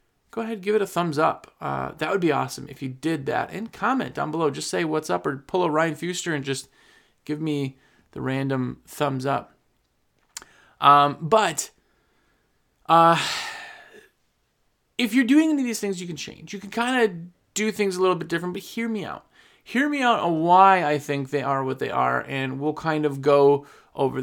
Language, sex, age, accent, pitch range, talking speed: English, male, 30-49, American, 145-195 Hz, 205 wpm